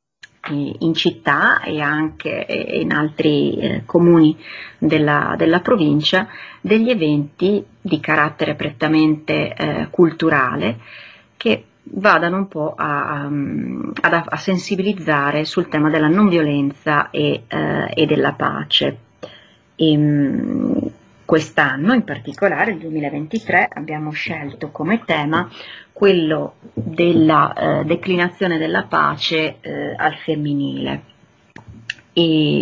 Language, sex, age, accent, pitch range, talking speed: Italian, female, 30-49, native, 150-175 Hz, 105 wpm